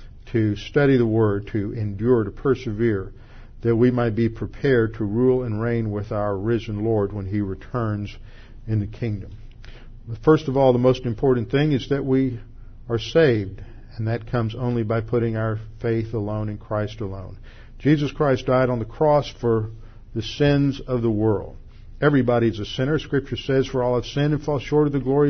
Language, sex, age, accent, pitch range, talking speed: English, male, 50-69, American, 110-130 Hz, 185 wpm